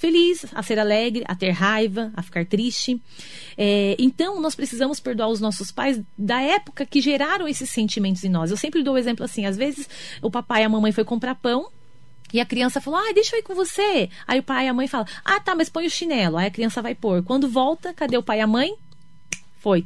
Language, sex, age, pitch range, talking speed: Portuguese, female, 30-49, 210-280 Hz, 235 wpm